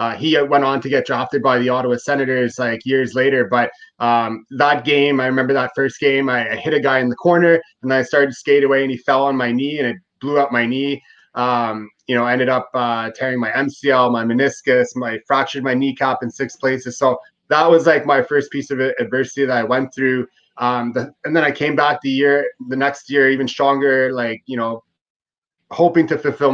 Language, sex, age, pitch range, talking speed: English, male, 20-39, 120-140 Hz, 225 wpm